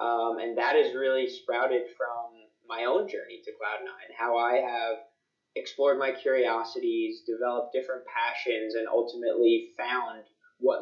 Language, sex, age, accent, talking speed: English, male, 20-39, American, 140 wpm